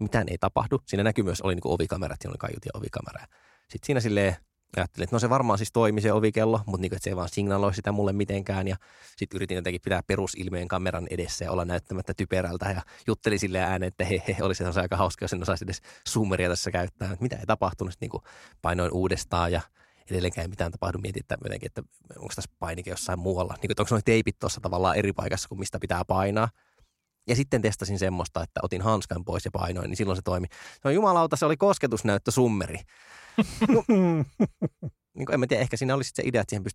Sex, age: male, 20-39